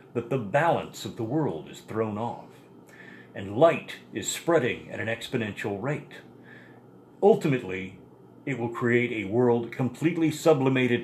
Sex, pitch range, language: male, 110-135 Hz, English